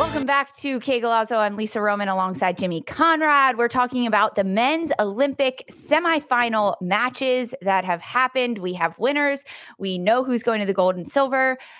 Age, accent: 20-39, American